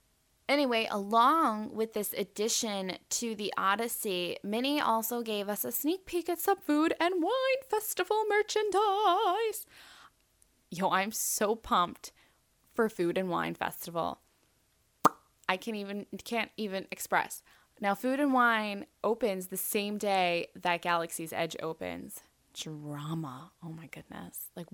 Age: 10-29